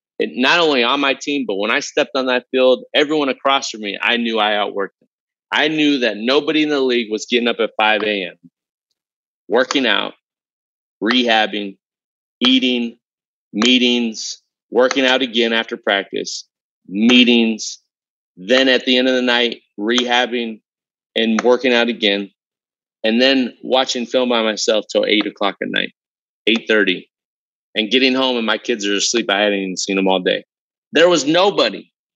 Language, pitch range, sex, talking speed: English, 110-130 Hz, male, 160 wpm